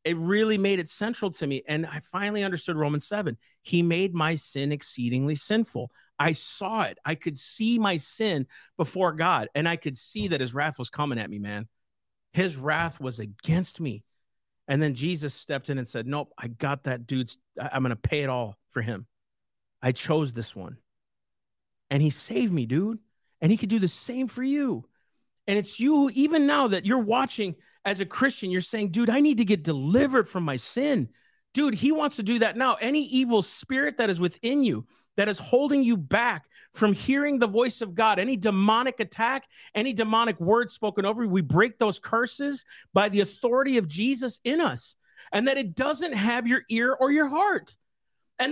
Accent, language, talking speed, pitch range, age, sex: American, English, 200 wpm, 150-250 Hz, 40-59, male